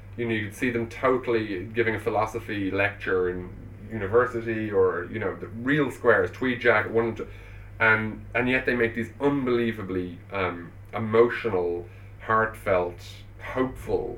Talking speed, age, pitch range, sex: 145 wpm, 30-49, 95-110 Hz, male